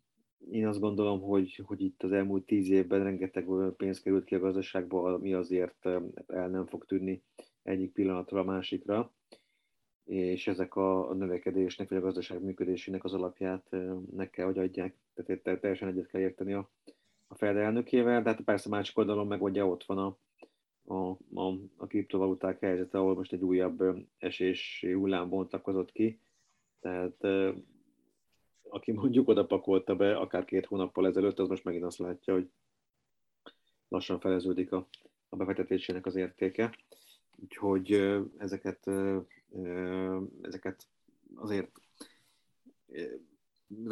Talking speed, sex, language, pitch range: 135 wpm, male, Hungarian, 95-100 Hz